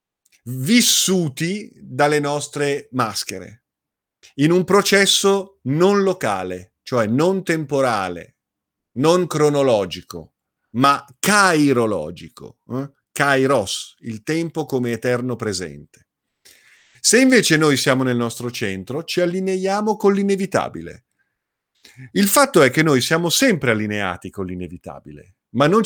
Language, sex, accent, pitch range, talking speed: Italian, male, native, 120-180 Hz, 105 wpm